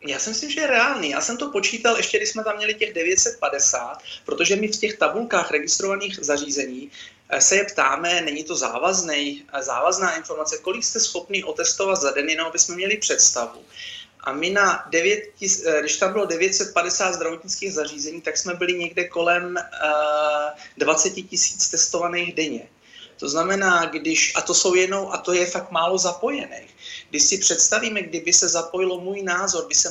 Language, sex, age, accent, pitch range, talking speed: Czech, male, 30-49, native, 155-195 Hz, 170 wpm